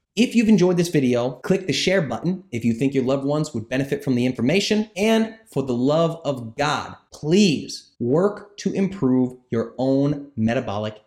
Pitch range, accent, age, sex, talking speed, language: 100-140 Hz, American, 30-49, male, 180 wpm, English